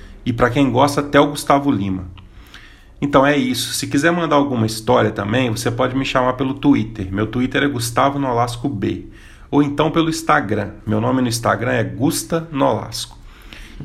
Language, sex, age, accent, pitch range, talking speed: Portuguese, male, 40-59, Brazilian, 110-140 Hz, 180 wpm